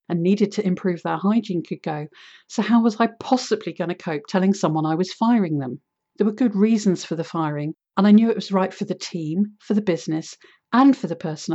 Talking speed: 235 wpm